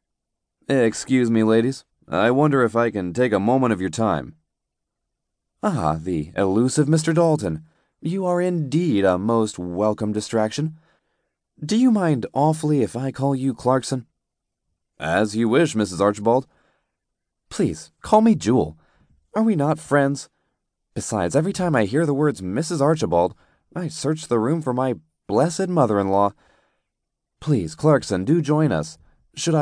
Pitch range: 85-135 Hz